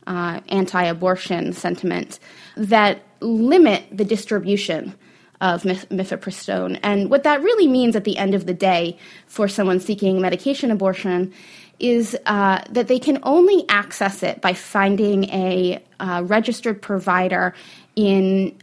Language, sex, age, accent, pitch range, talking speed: English, female, 20-39, American, 185-220 Hz, 130 wpm